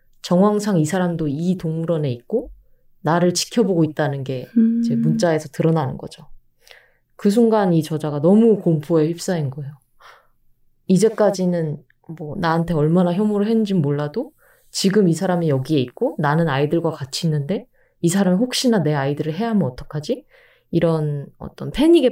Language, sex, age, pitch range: Korean, female, 20-39, 150-215 Hz